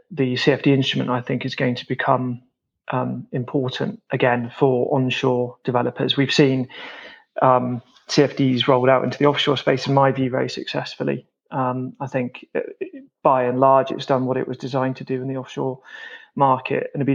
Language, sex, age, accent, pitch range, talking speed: English, male, 30-49, British, 125-145 Hz, 180 wpm